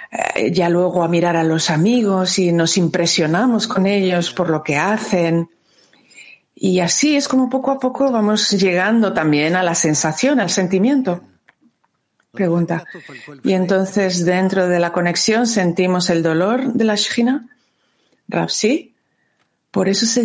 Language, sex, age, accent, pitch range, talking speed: Spanish, female, 50-69, Spanish, 170-215 Hz, 145 wpm